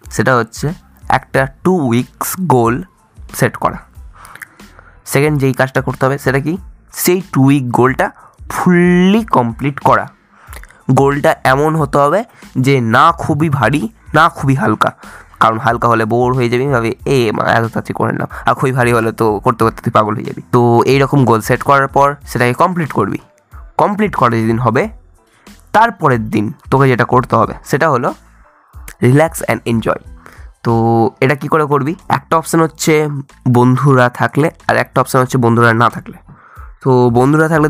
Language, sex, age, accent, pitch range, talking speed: Bengali, male, 20-39, native, 115-140 Hz, 140 wpm